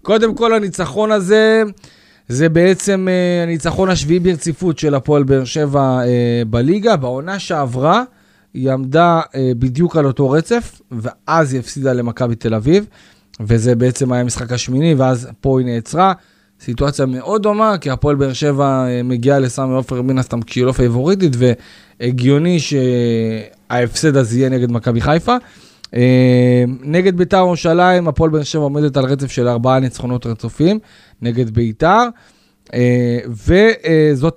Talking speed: 130 wpm